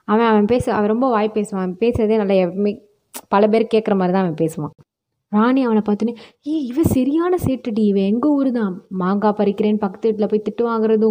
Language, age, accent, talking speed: Tamil, 20-39, native, 180 wpm